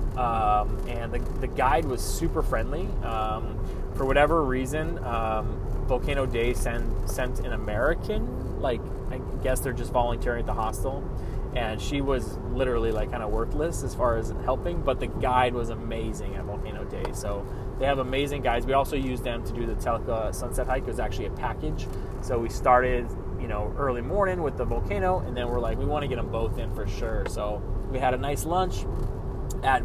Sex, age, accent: male, 20-39, American